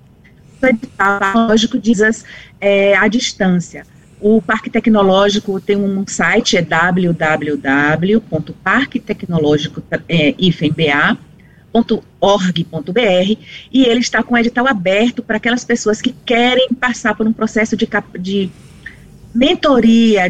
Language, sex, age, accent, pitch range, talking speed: Portuguese, female, 40-59, Brazilian, 190-235 Hz, 100 wpm